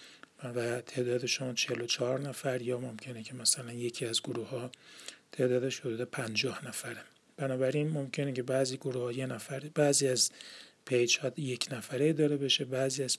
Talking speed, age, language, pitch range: 155 wpm, 40-59, Persian, 125-150 Hz